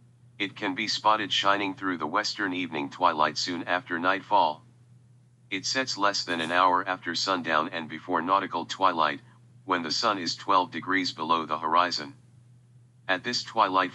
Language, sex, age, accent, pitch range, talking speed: English, male, 40-59, American, 95-125 Hz, 160 wpm